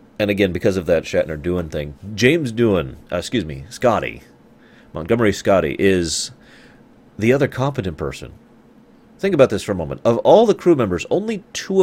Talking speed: 165 wpm